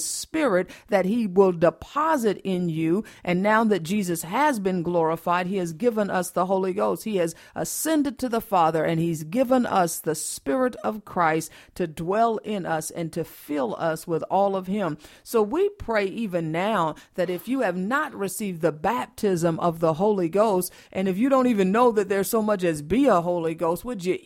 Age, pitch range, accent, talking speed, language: 50-69, 165-215 Hz, American, 200 wpm, English